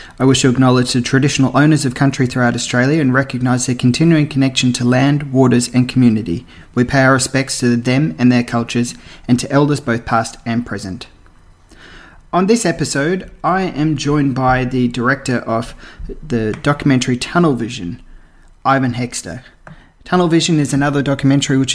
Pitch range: 120-140 Hz